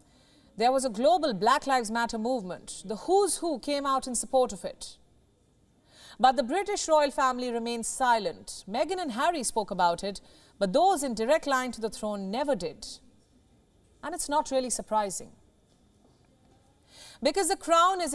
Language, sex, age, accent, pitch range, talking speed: English, female, 40-59, Indian, 230-300 Hz, 160 wpm